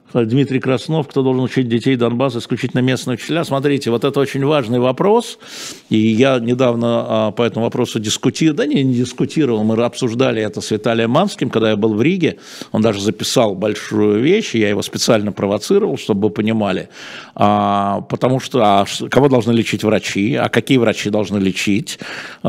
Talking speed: 170 wpm